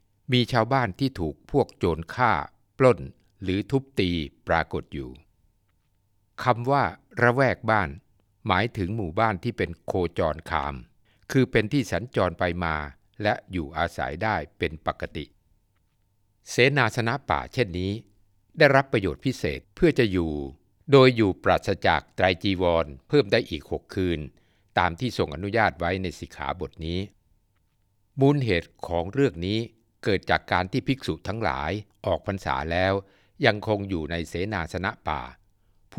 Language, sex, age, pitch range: Thai, male, 60-79, 85-115 Hz